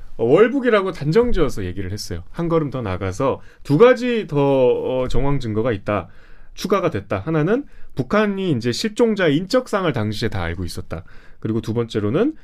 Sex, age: male, 30-49